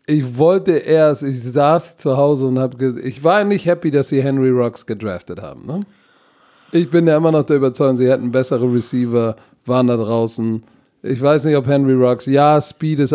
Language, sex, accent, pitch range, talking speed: German, male, German, 130-155 Hz, 195 wpm